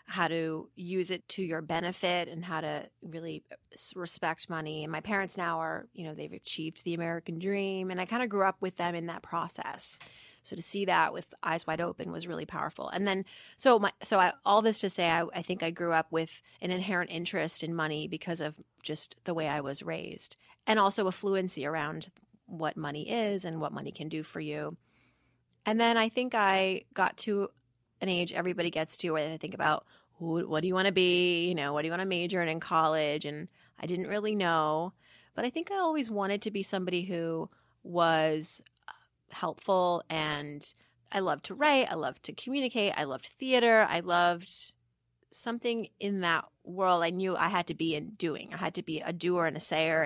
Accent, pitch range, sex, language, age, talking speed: American, 160-195 Hz, female, English, 30-49, 210 wpm